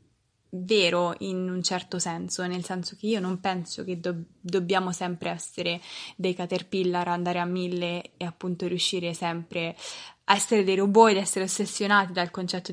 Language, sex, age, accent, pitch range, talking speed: Italian, female, 20-39, native, 180-210 Hz, 160 wpm